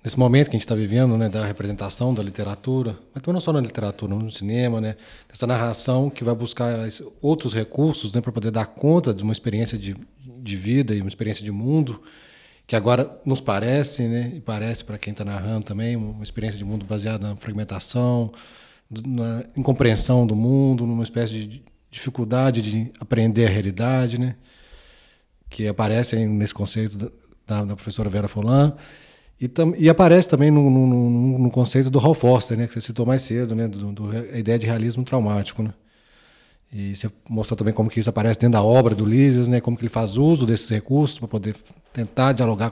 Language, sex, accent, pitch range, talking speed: Portuguese, male, Brazilian, 110-130 Hz, 190 wpm